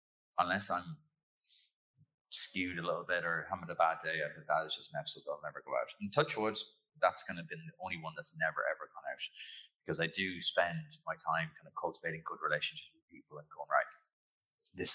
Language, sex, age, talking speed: English, male, 30-49, 230 wpm